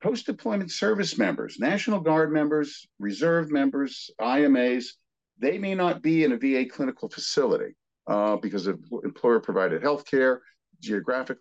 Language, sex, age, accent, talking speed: English, male, 50-69, American, 130 wpm